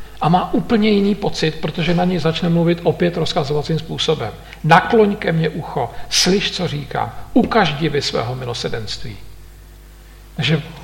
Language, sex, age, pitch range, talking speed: Slovak, male, 50-69, 140-175 Hz, 145 wpm